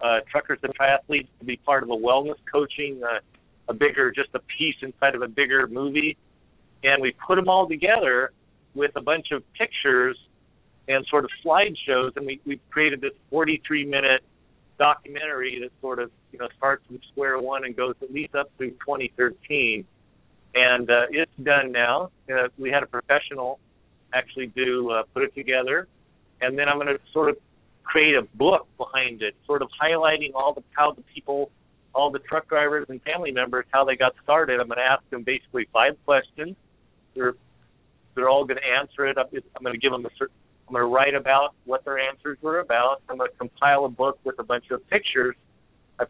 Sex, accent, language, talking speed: male, American, English, 195 wpm